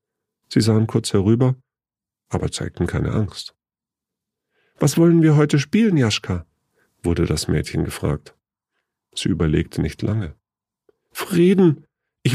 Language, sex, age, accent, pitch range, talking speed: German, male, 50-69, German, 100-155 Hz, 115 wpm